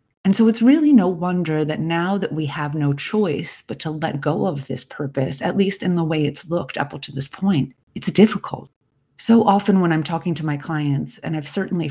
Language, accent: English, American